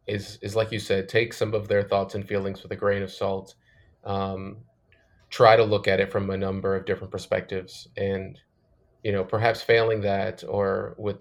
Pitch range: 100-115 Hz